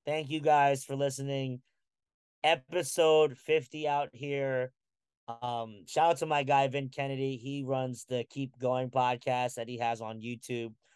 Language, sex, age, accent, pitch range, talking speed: English, male, 30-49, American, 125-145 Hz, 155 wpm